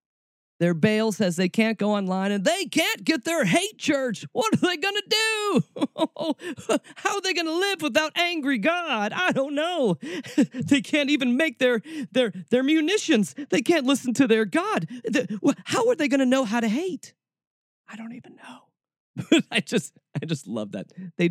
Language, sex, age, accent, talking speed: English, male, 40-59, American, 190 wpm